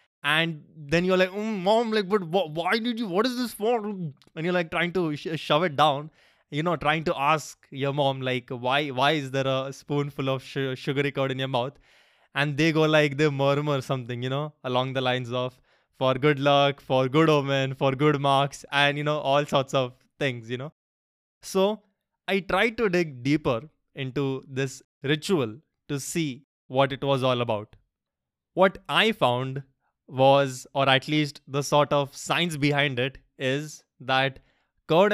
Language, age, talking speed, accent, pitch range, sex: English, 20-39, 185 wpm, Indian, 135-165 Hz, male